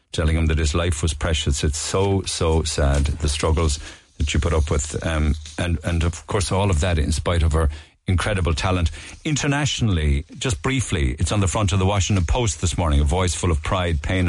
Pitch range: 80-100 Hz